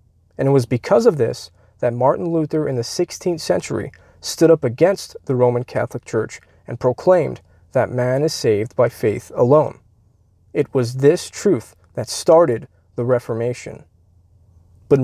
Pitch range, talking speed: 110-160 Hz, 150 wpm